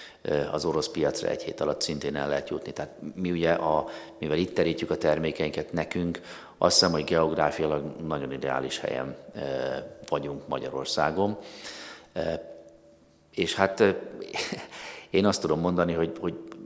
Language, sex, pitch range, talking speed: Hungarian, male, 75-85 Hz, 135 wpm